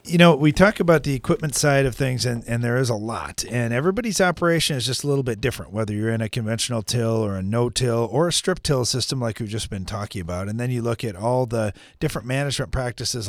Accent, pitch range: American, 105-130 Hz